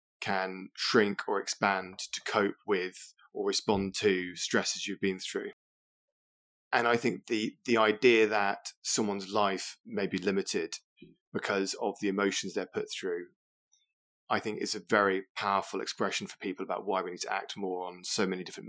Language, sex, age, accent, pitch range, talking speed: English, male, 20-39, British, 95-110 Hz, 170 wpm